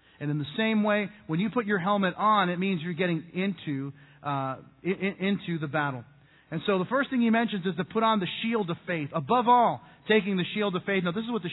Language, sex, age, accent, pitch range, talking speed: English, male, 40-59, American, 160-205 Hz, 250 wpm